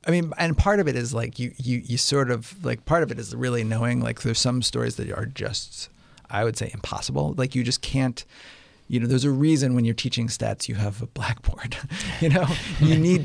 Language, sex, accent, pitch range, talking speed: English, male, American, 115-140 Hz, 235 wpm